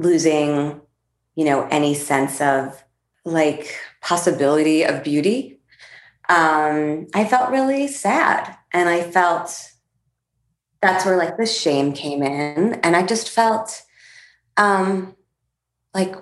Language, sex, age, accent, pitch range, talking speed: English, female, 20-39, American, 150-190 Hz, 115 wpm